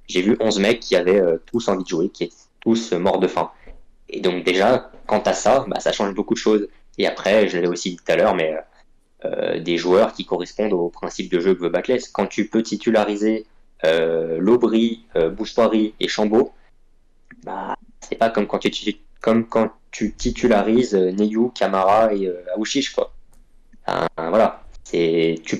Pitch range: 90-115 Hz